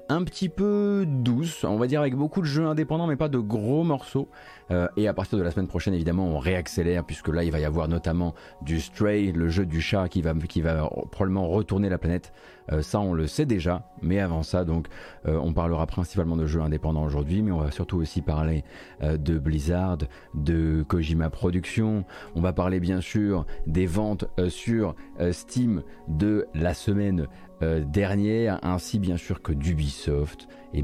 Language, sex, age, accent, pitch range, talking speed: French, male, 30-49, French, 80-105 Hz, 195 wpm